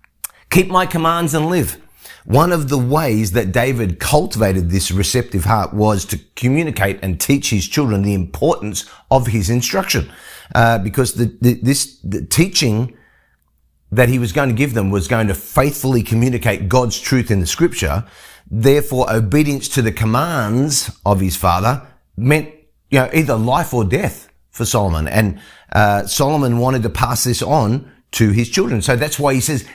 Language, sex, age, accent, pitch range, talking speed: English, male, 30-49, Australian, 110-145 Hz, 170 wpm